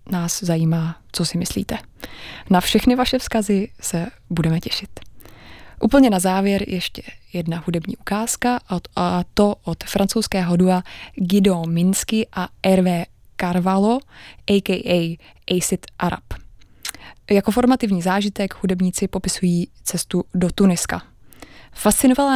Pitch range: 175-205 Hz